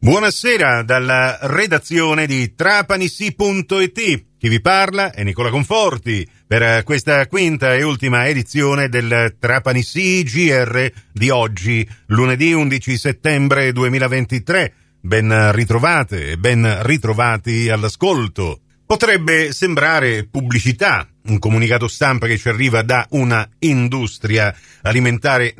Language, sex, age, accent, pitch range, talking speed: Italian, male, 40-59, native, 115-145 Hz, 105 wpm